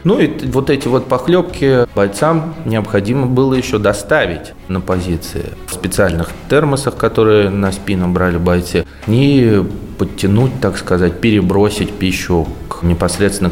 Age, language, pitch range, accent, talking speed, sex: 20-39, Russian, 90-115 Hz, native, 125 wpm, male